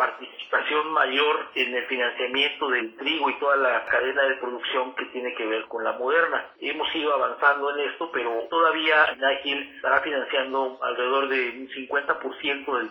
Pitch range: 130-160 Hz